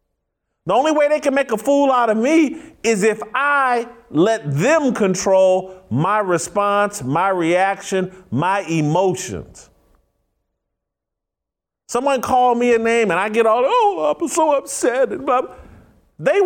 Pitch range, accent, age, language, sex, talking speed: 165-245 Hz, American, 50-69, English, male, 135 wpm